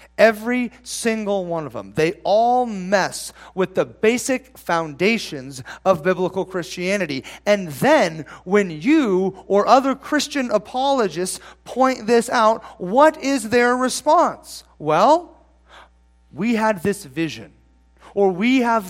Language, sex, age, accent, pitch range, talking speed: English, male, 30-49, American, 170-225 Hz, 120 wpm